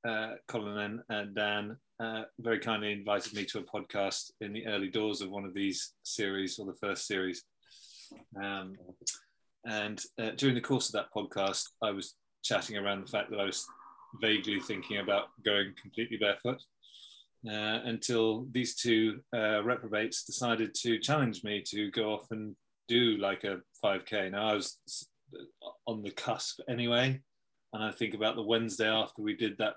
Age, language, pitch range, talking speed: 30-49, English, 100-115 Hz, 170 wpm